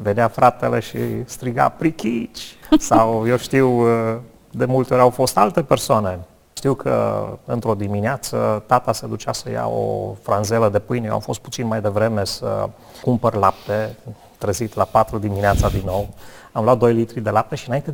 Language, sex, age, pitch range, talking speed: Romanian, male, 30-49, 105-130 Hz, 170 wpm